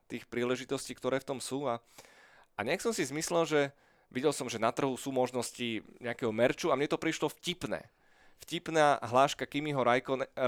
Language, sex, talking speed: Slovak, male, 180 wpm